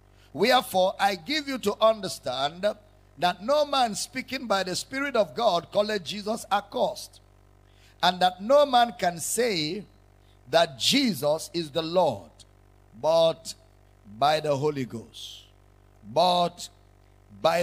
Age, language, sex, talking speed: 50-69, English, male, 125 wpm